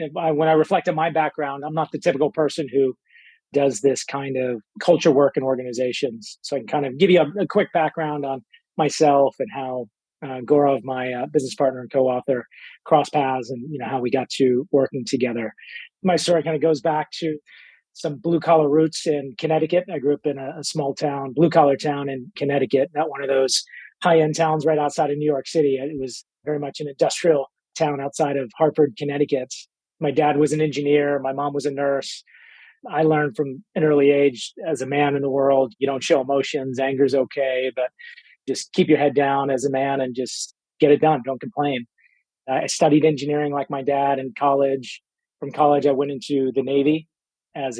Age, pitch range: 30-49, 135-155 Hz